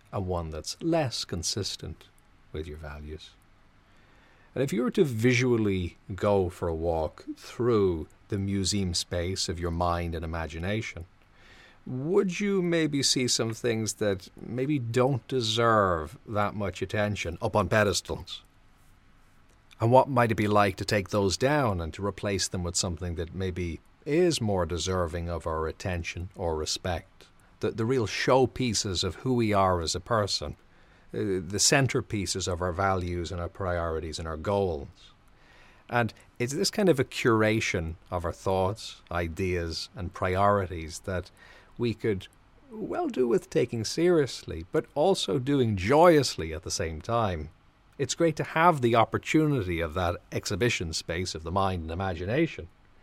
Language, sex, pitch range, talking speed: English, male, 90-115 Hz, 155 wpm